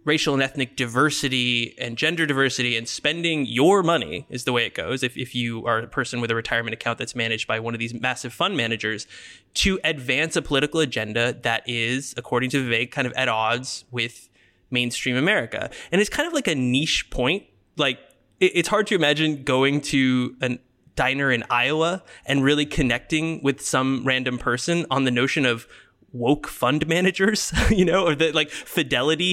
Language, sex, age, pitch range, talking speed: English, male, 20-39, 120-155 Hz, 190 wpm